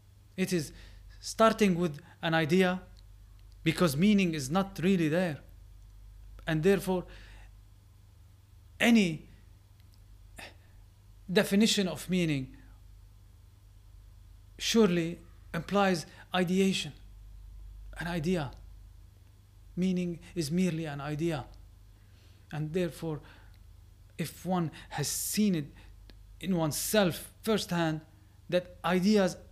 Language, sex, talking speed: English, male, 80 wpm